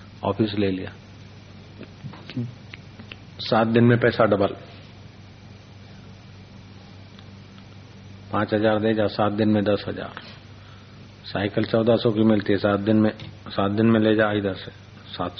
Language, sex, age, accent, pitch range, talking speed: Hindi, male, 40-59, native, 100-110 Hz, 135 wpm